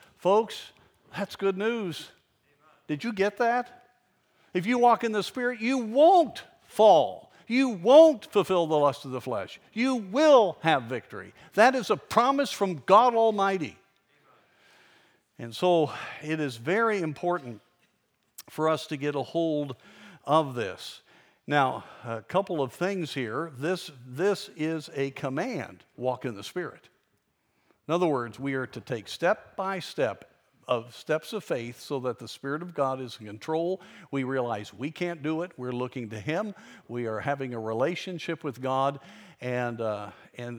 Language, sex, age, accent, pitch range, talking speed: English, male, 50-69, American, 125-185 Hz, 160 wpm